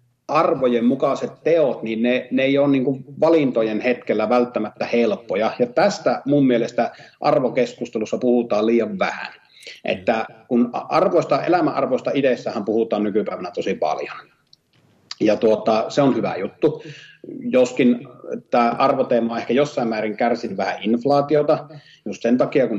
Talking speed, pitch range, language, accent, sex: 130 wpm, 115-145 Hz, Finnish, native, male